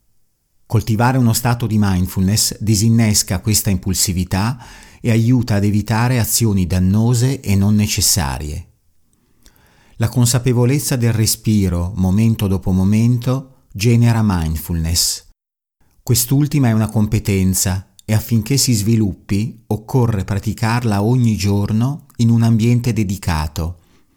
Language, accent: Italian, native